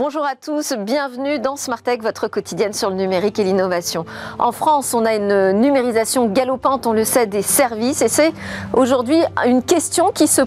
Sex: female